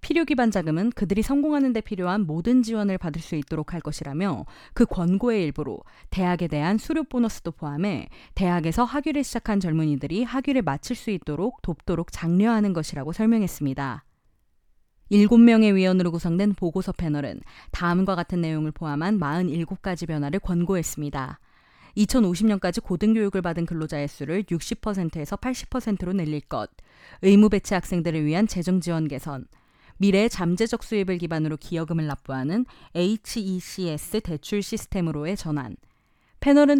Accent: native